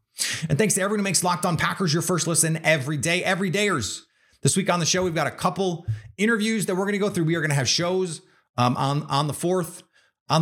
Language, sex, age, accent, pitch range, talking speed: English, male, 30-49, American, 110-170 Hz, 250 wpm